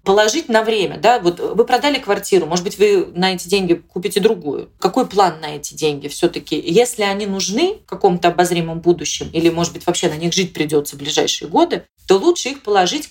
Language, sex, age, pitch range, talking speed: Russian, female, 30-49, 175-240 Hz, 195 wpm